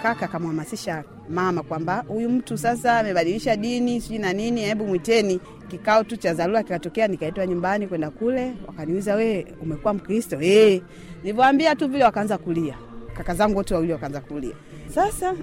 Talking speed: 160 wpm